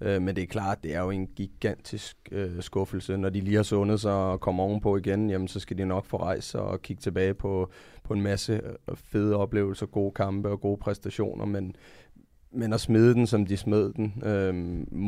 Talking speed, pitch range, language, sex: 210 wpm, 100-115 Hz, Danish, male